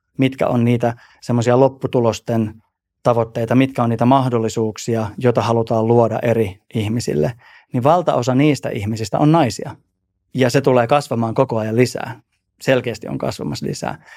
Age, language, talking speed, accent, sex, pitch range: 20-39, Finnish, 135 wpm, native, male, 115-130 Hz